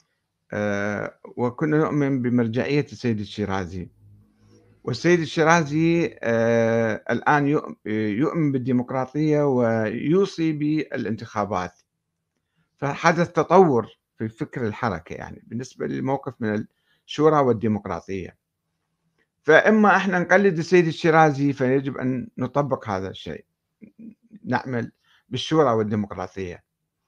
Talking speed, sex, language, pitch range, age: 80 wpm, male, Arabic, 115-160 Hz, 50-69